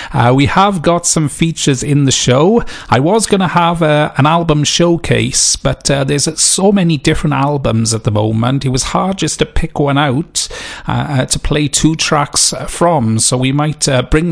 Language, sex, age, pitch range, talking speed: English, male, 40-59, 135-165 Hz, 195 wpm